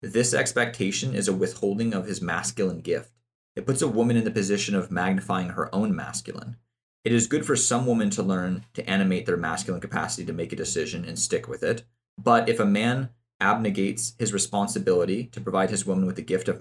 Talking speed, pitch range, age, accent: 205 wpm, 100-120 Hz, 30-49, American